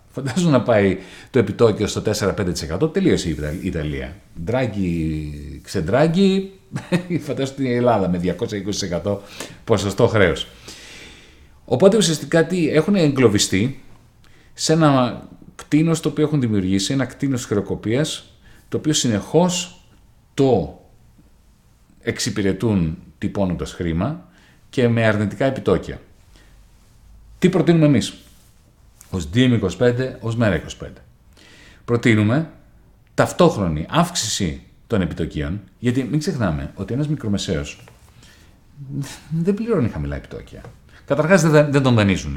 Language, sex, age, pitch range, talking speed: Greek, male, 40-59, 95-145 Hz, 100 wpm